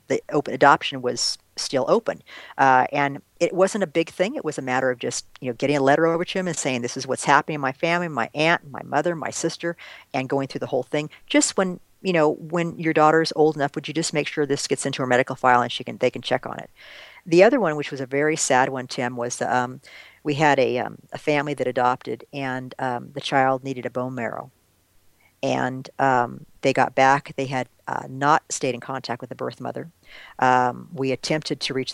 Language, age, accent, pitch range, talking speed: English, 50-69, American, 125-150 Hz, 230 wpm